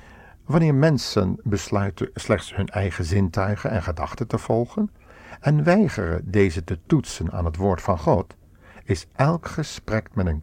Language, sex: Dutch, male